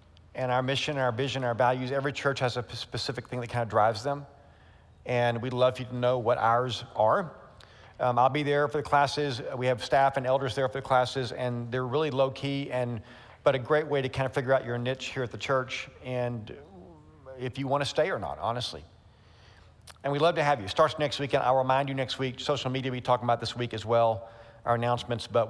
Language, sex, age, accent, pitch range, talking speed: English, male, 40-59, American, 120-145 Hz, 240 wpm